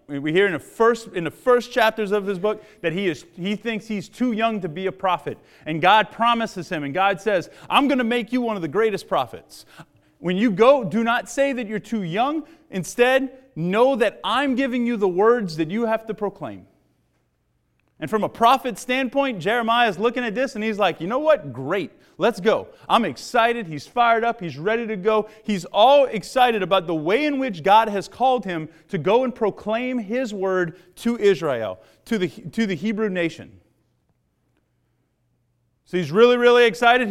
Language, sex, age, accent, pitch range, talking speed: English, male, 30-49, American, 190-240 Hz, 195 wpm